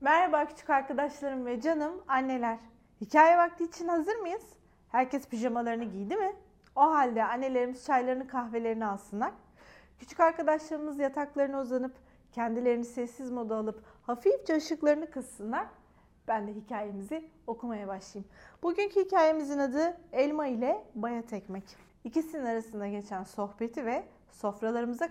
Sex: female